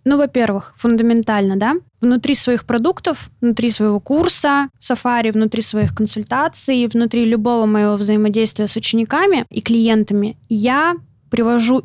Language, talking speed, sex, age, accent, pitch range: Russian, 120 wpm, female, 20-39, native, 220-255 Hz